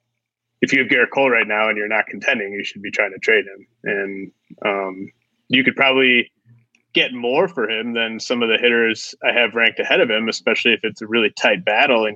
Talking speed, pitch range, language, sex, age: 225 wpm, 105-120 Hz, English, male, 20-39